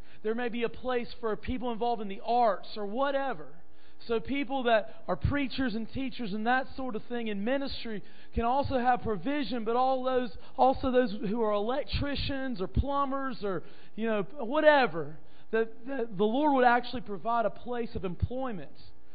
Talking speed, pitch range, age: 175 wpm, 190-250 Hz, 40-59